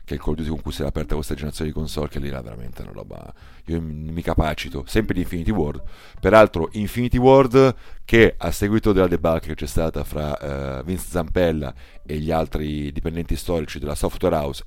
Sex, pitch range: male, 80-100 Hz